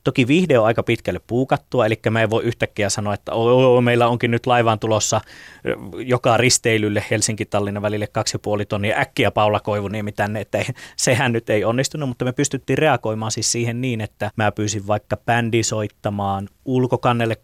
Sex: male